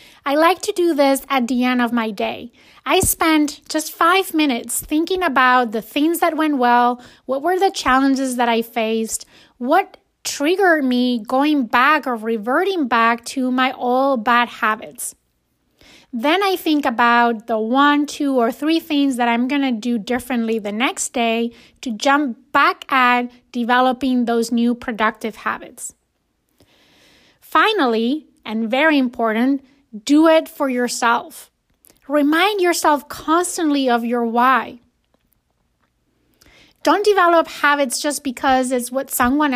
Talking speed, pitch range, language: 140 wpm, 245-300 Hz, English